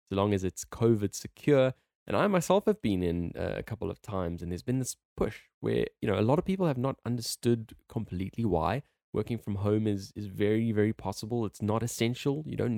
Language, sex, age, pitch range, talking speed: English, male, 10-29, 95-120 Hz, 210 wpm